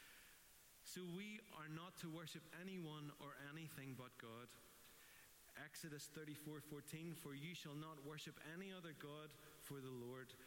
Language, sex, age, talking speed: English, male, 30-49, 140 wpm